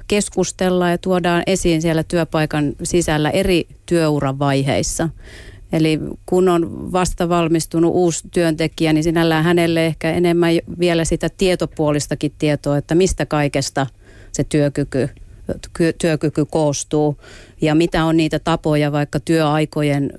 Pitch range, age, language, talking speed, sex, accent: 140-165 Hz, 30-49, Finnish, 115 wpm, female, native